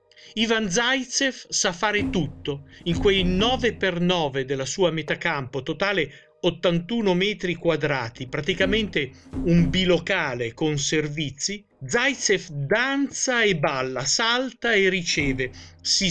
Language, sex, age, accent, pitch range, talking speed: Italian, male, 50-69, native, 150-210 Hz, 105 wpm